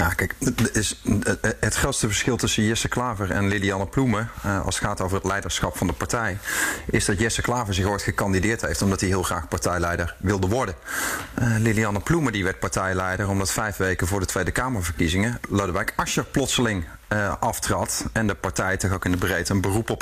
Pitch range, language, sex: 95-115 Hz, Dutch, male